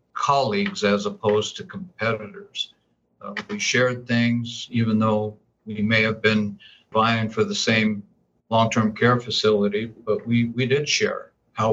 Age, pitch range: 60-79, 110-125 Hz